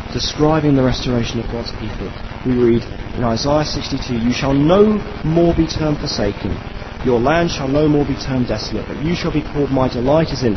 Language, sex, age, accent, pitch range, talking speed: English, male, 30-49, British, 105-145 Hz, 205 wpm